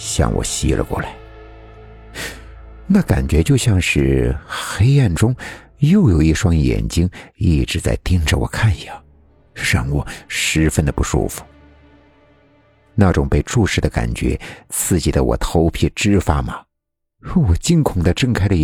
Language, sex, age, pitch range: Chinese, male, 60-79, 75-110 Hz